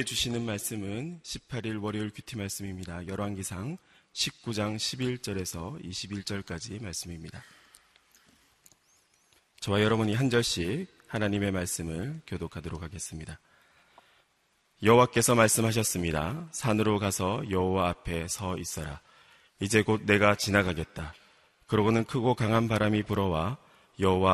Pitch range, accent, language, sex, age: 90-110 Hz, native, Korean, male, 30-49